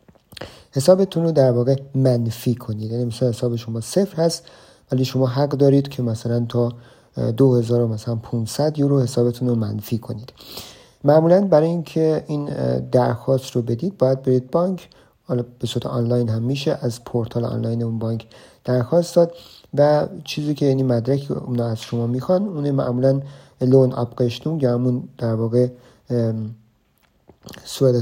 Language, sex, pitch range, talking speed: Persian, male, 120-140 Hz, 145 wpm